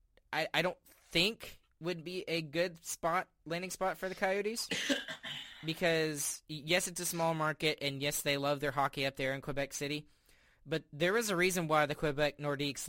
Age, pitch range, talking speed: 20-39, 130-155 Hz, 180 wpm